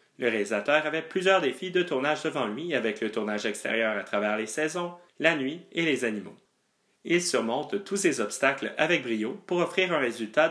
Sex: male